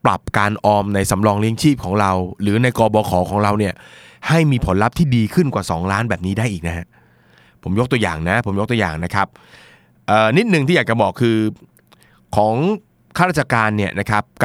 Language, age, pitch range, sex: Thai, 20-39, 95-125 Hz, male